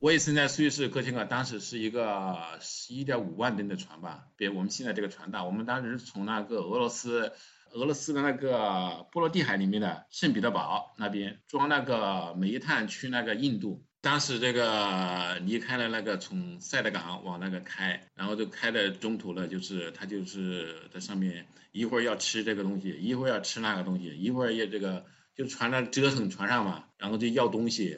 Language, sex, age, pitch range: English, male, 50-69, 100-130 Hz